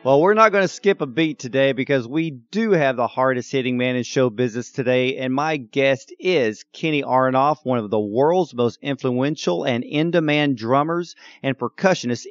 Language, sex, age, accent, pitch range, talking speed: English, male, 40-59, American, 120-150 Hz, 180 wpm